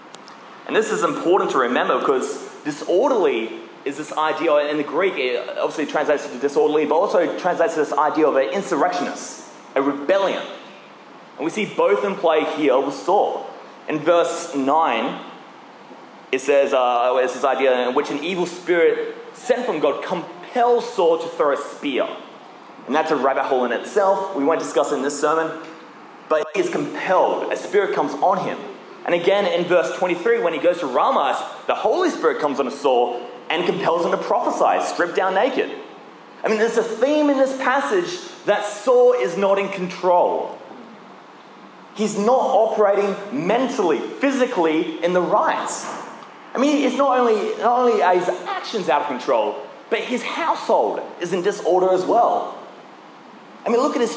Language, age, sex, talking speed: English, 20-39, male, 175 wpm